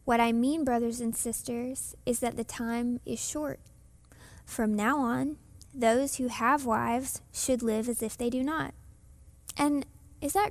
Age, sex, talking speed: 10-29, female, 165 wpm